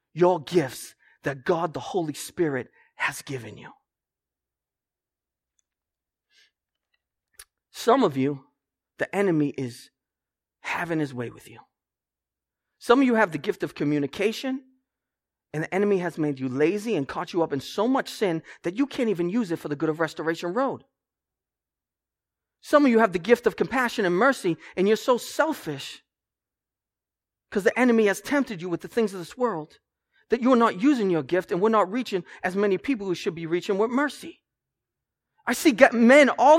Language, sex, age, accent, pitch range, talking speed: English, male, 30-49, American, 165-265 Hz, 175 wpm